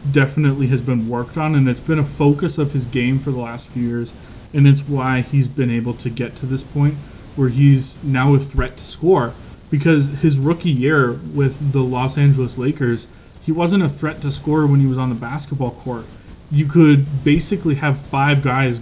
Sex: male